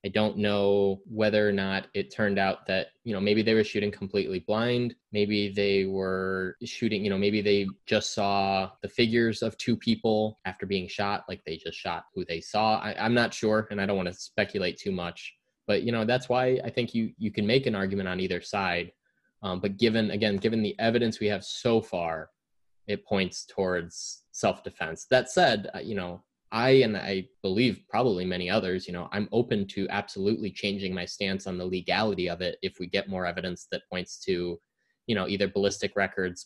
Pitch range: 95-110 Hz